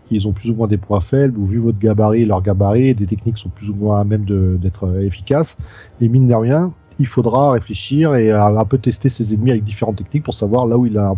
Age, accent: 40-59, French